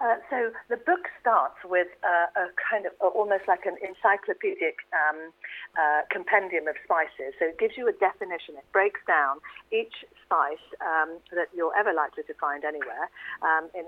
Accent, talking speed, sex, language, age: British, 175 wpm, female, English, 50-69